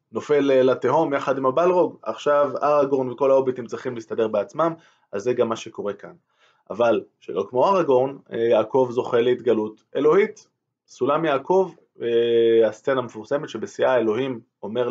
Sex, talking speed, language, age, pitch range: male, 135 wpm, Hebrew, 20-39, 125-185 Hz